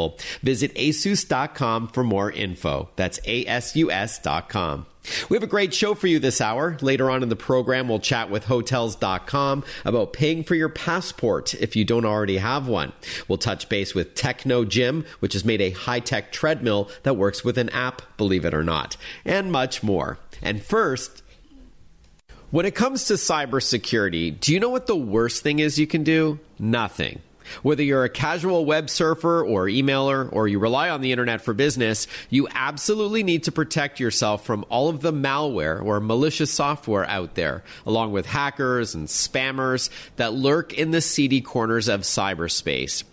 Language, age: English, 40-59